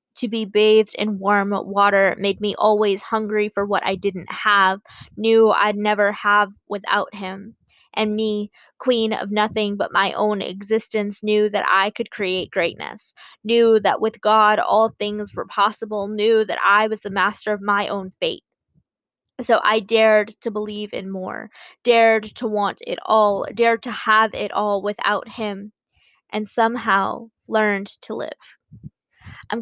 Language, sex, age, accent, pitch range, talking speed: English, female, 20-39, American, 200-225 Hz, 160 wpm